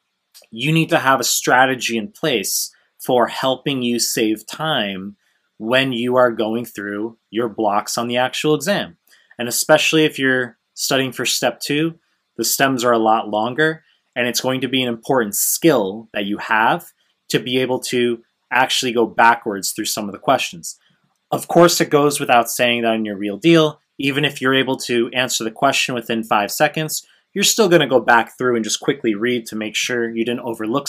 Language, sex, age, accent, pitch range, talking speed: English, male, 20-39, American, 115-140 Hz, 190 wpm